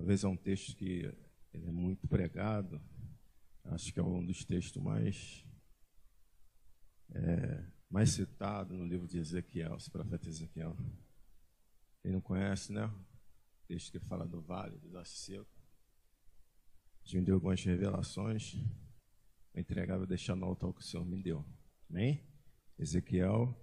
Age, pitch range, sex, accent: 50-69, 90-115 Hz, male, Brazilian